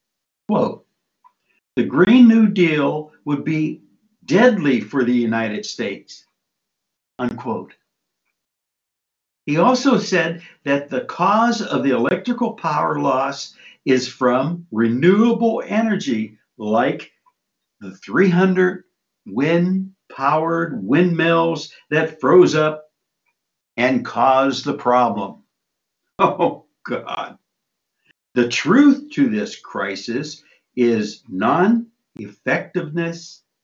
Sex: male